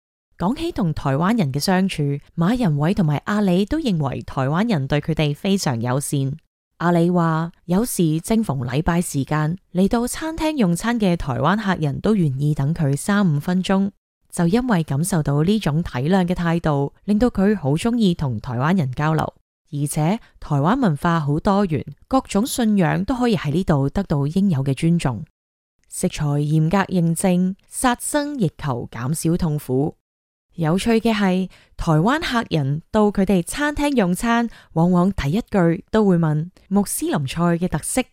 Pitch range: 150-200 Hz